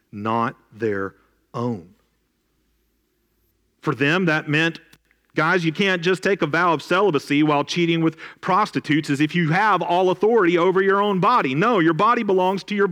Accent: American